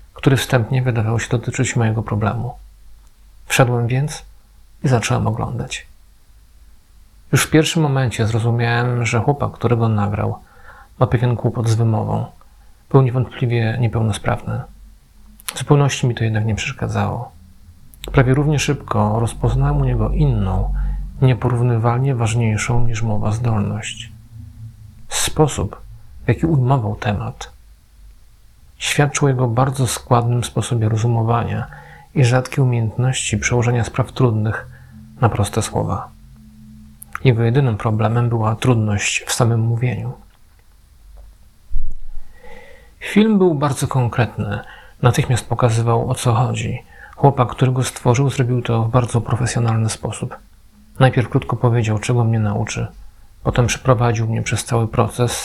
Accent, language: native, Polish